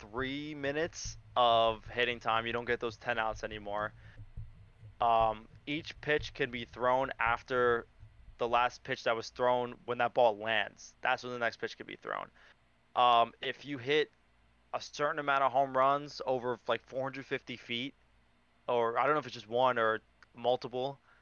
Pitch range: 110-125 Hz